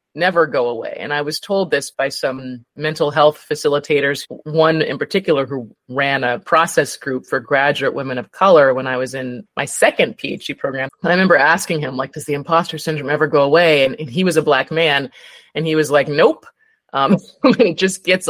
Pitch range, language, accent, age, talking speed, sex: 145-195 Hz, English, American, 30-49, 205 wpm, female